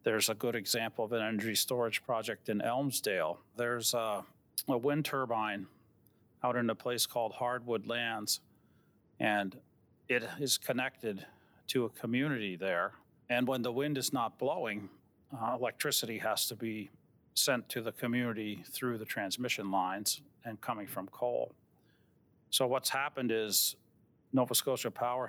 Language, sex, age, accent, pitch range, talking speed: English, male, 40-59, American, 110-125 Hz, 145 wpm